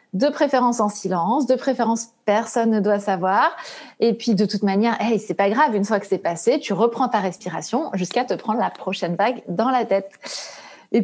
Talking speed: 205 wpm